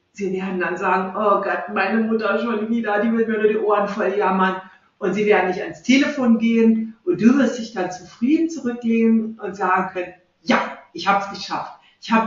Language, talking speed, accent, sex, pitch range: German, 210 wpm, German, female, 180-225 Hz